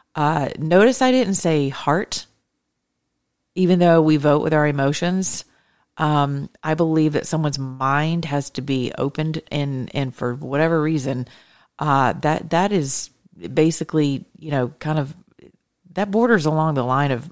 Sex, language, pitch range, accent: female, English, 135-160 Hz, American